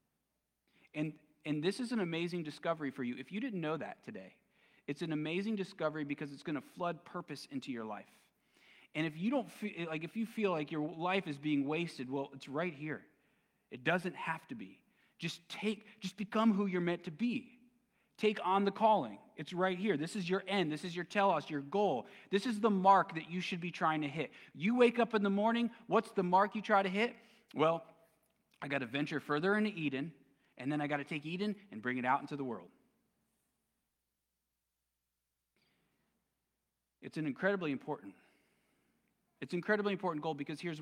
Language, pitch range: English, 150-200 Hz